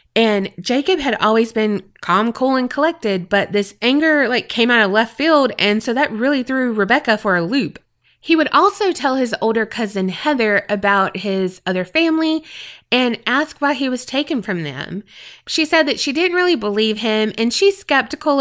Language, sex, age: English, female, 20-39